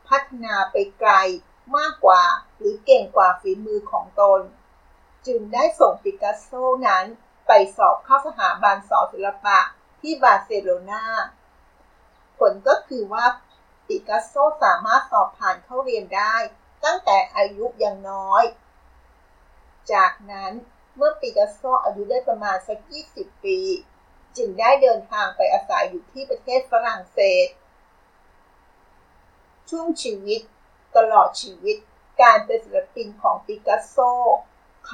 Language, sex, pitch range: Thai, female, 200-305 Hz